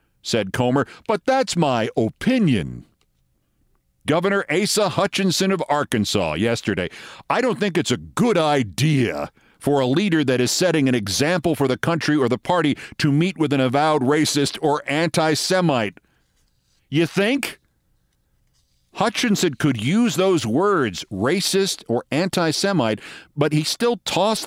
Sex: male